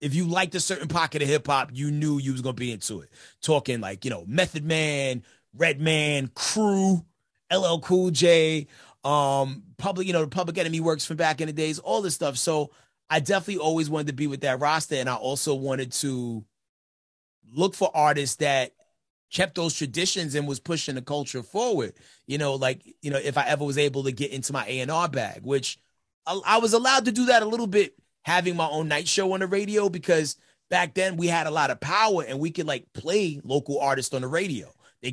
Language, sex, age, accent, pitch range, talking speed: English, male, 30-49, American, 135-170 Hz, 220 wpm